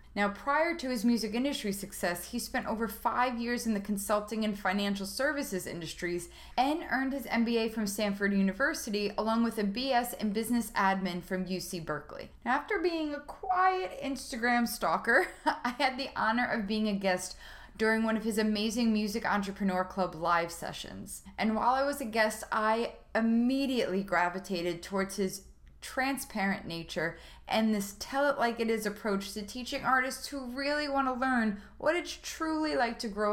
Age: 20-39